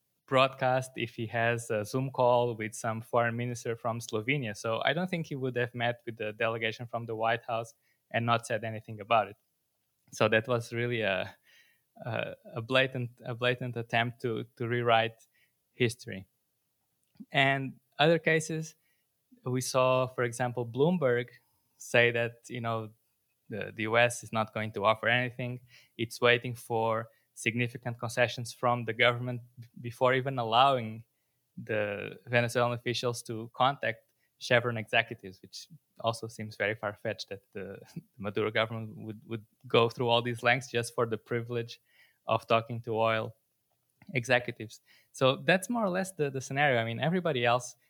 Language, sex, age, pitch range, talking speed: English, male, 20-39, 115-125 Hz, 160 wpm